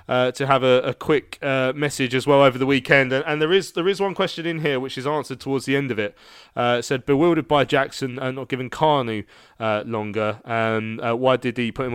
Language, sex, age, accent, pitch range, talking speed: English, male, 20-39, British, 115-135 Hz, 260 wpm